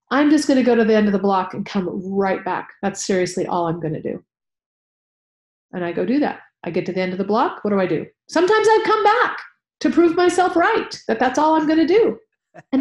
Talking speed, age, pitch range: 260 wpm, 40-59, 180-275 Hz